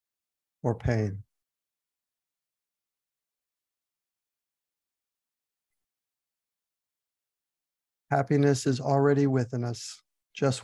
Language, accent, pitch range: English, American, 115-140 Hz